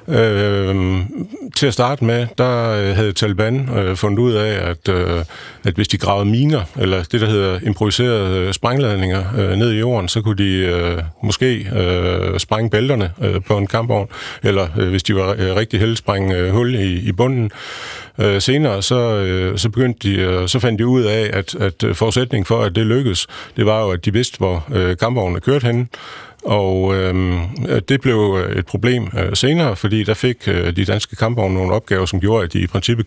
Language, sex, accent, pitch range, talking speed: Danish, male, native, 95-120 Hz, 195 wpm